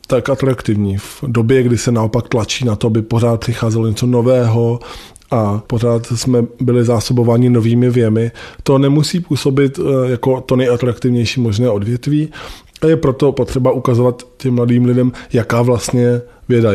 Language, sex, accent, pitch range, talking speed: Czech, male, native, 115-130 Hz, 145 wpm